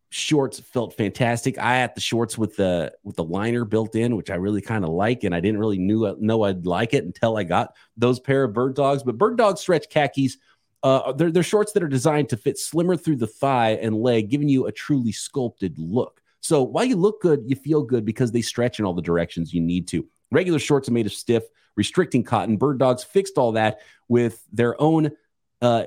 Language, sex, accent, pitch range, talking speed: English, male, American, 105-145 Hz, 225 wpm